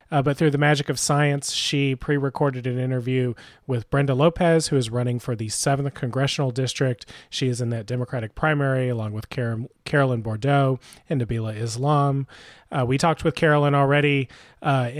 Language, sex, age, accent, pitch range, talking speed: English, male, 30-49, American, 125-150 Hz, 175 wpm